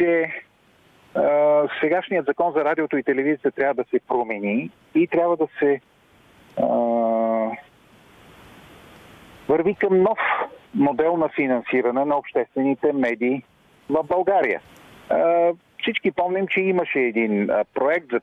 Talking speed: 120 wpm